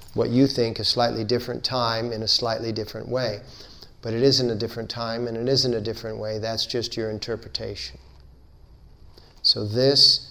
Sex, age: male, 50-69